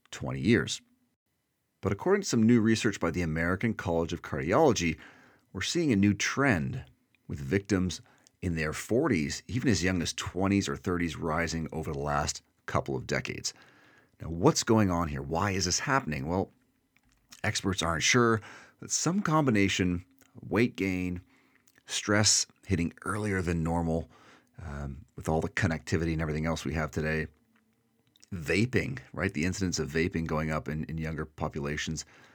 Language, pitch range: English, 80-105 Hz